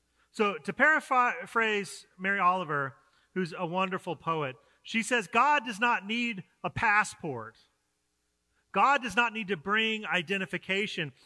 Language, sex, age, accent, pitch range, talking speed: English, male, 40-59, American, 150-210 Hz, 130 wpm